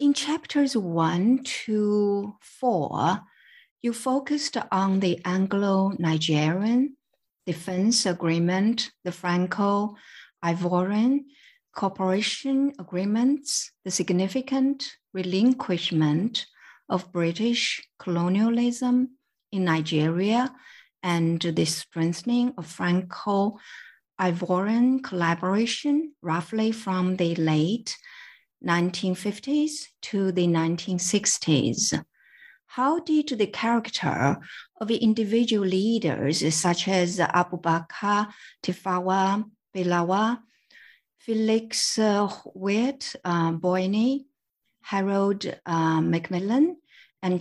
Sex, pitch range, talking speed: female, 175-235 Hz, 80 wpm